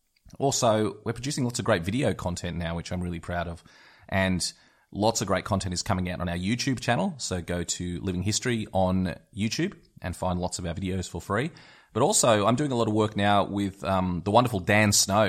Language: English